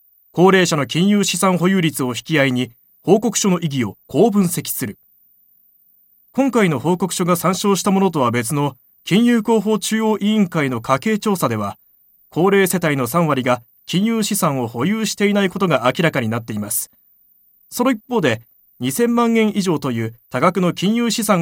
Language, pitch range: Japanese, 130-205 Hz